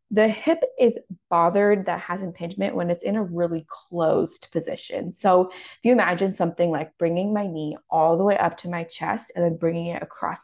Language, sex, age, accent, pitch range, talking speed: English, female, 20-39, American, 170-200 Hz, 200 wpm